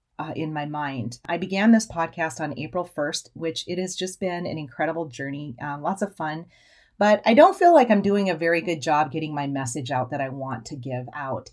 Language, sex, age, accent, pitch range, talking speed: English, female, 30-49, American, 145-185 Hz, 230 wpm